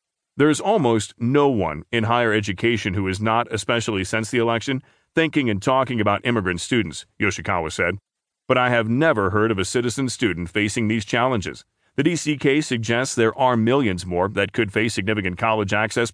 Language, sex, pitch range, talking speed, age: English, male, 105-130 Hz, 180 wpm, 40-59